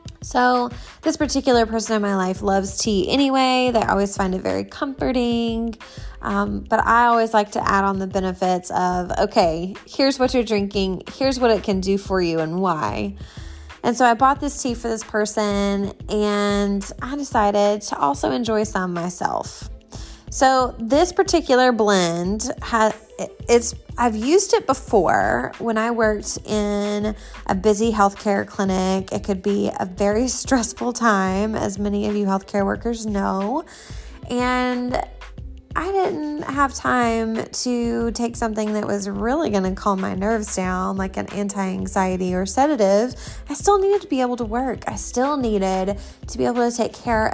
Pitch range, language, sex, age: 195-245 Hz, English, female, 20-39